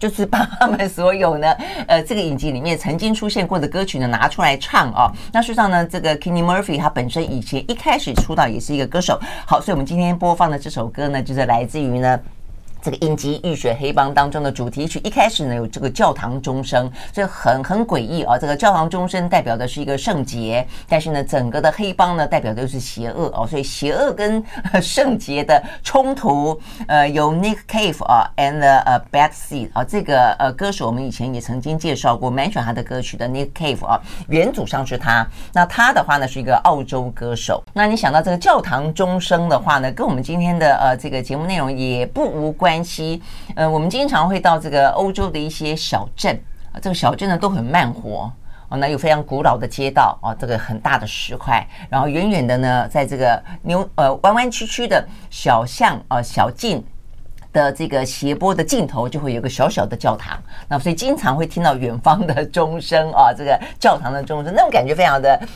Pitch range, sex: 130-175 Hz, female